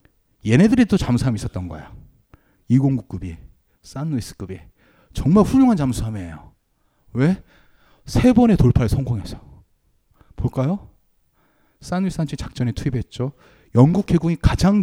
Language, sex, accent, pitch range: Korean, male, native, 105-180 Hz